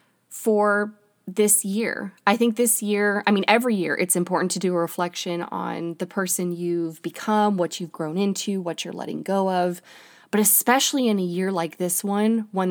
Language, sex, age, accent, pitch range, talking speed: English, female, 20-39, American, 170-205 Hz, 190 wpm